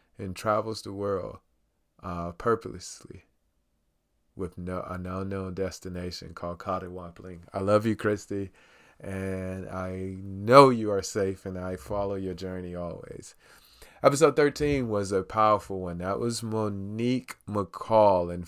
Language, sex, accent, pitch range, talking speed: English, male, American, 90-105 Hz, 130 wpm